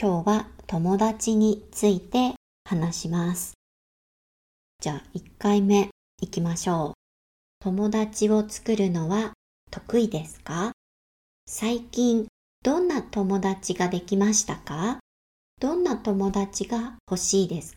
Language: Japanese